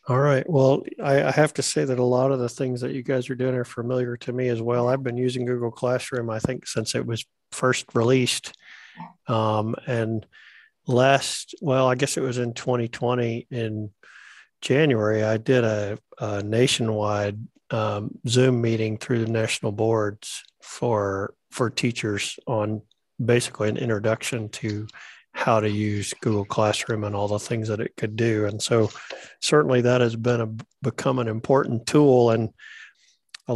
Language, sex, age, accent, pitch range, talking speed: English, male, 50-69, American, 110-125 Hz, 170 wpm